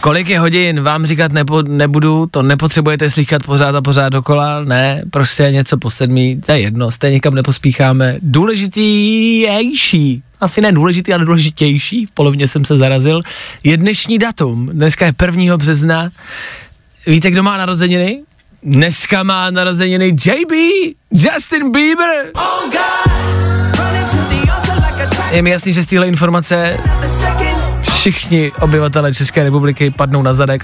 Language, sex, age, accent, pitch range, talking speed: Czech, male, 20-39, native, 130-175 Hz, 135 wpm